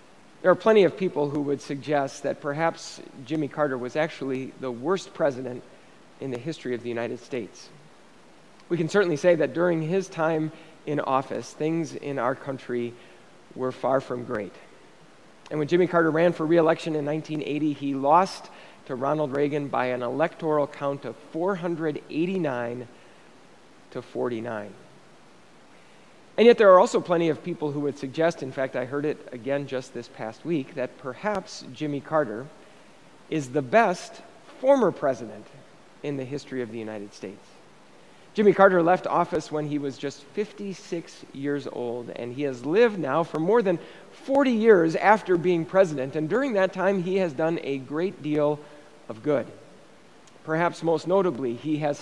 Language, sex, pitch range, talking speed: English, male, 135-175 Hz, 165 wpm